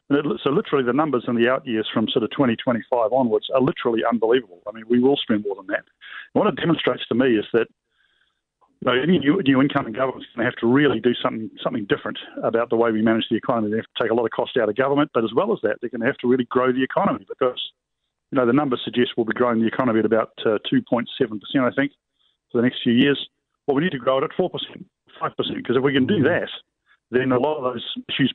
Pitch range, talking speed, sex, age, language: 115-130 Hz, 265 wpm, male, 50-69, English